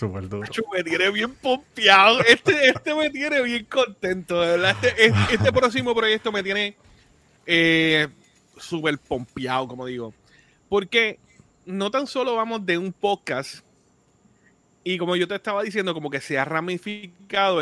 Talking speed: 135 wpm